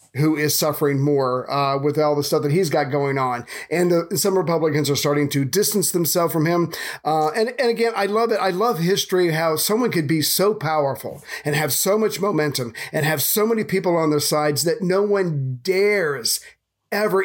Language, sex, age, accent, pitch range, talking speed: English, male, 40-59, American, 150-195 Hz, 205 wpm